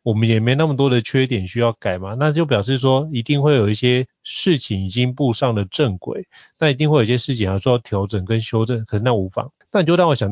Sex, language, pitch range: male, Chinese, 110-145 Hz